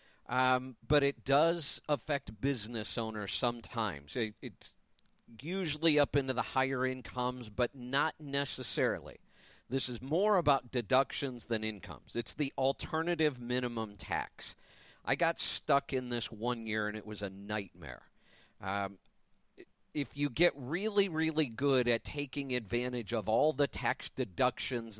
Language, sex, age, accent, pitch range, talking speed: English, male, 50-69, American, 115-150 Hz, 135 wpm